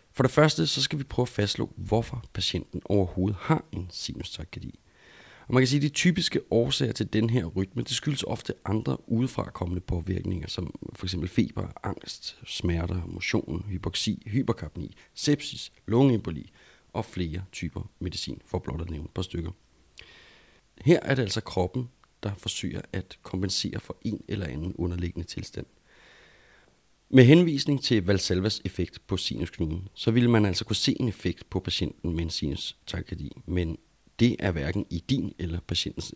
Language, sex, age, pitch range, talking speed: Danish, male, 40-59, 90-115 Hz, 165 wpm